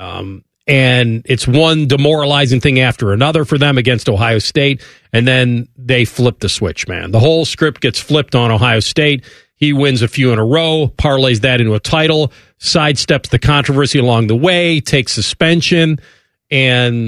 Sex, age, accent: male, 40-59, American